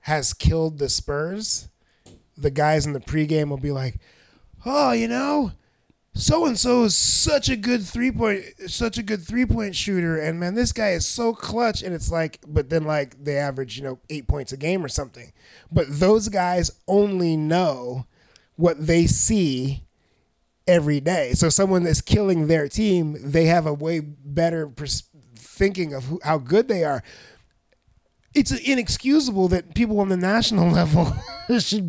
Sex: male